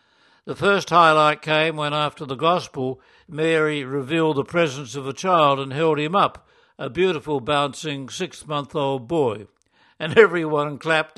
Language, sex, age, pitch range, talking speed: English, male, 60-79, 140-165 Hz, 145 wpm